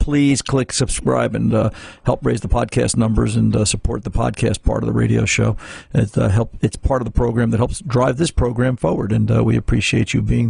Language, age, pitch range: English, 50-69, 115-145 Hz